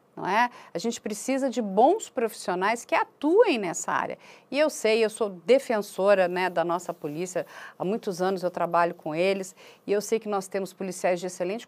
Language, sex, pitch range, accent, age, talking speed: Portuguese, female, 195-255 Hz, Brazilian, 40-59, 195 wpm